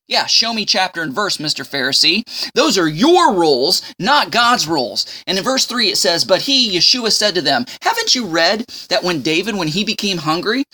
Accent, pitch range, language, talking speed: American, 170-250 Hz, English, 205 wpm